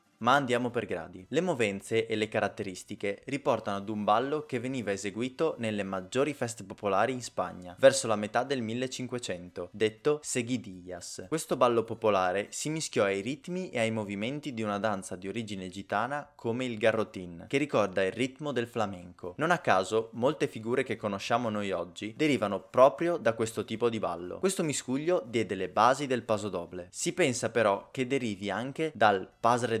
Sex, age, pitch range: male, 20-39, 100-130 Hz